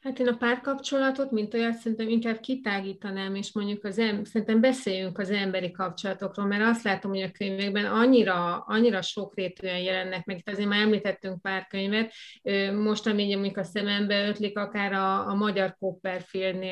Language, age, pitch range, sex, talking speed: Hungarian, 30-49, 185-205 Hz, female, 160 wpm